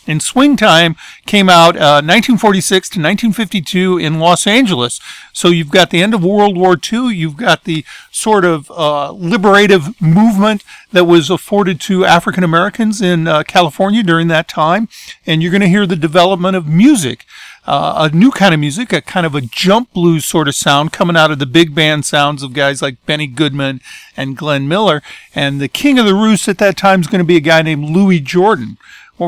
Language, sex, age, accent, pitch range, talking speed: English, male, 50-69, American, 145-190 Hz, 200 wpm